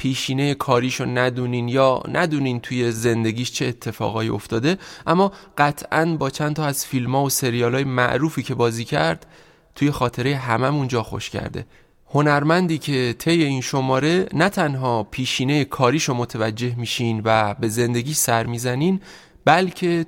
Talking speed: 140 wpm